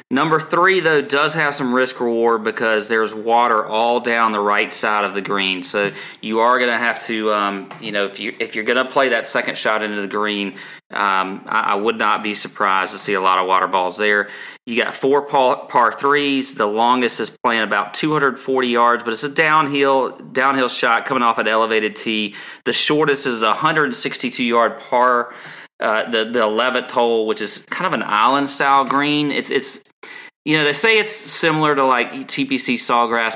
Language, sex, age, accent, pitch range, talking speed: English, male, 30-49, American, 105-135 Hz, 200 wpm